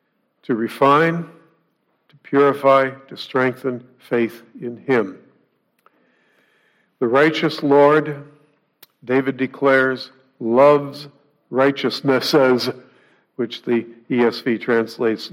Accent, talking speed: American, 80 wpm